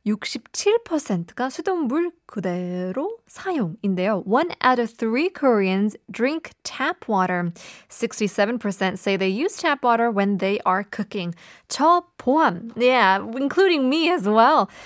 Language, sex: Korean, female